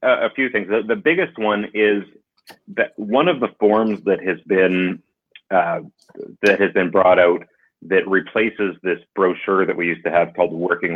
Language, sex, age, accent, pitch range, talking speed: English, male, 30-49, American, 85-95 Hz, 185 wpm